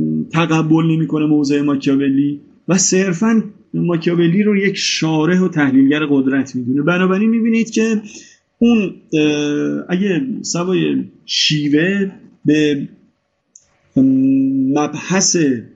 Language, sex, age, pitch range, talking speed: Persian, male, 30-49, 140-180 Hz, 90 wpm